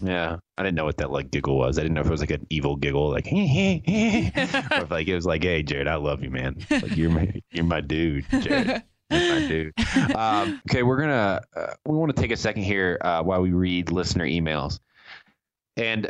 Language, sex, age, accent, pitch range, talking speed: English, male, 20-39, American, 85-105 Hz, 225 wpm